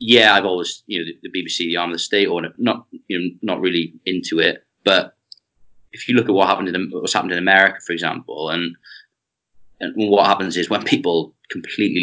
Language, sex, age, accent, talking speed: English, male, 30-49, British, 215 wpm